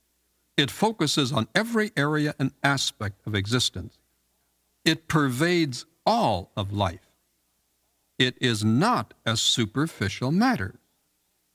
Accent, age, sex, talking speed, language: American, 60-79, male, 105 wpm, English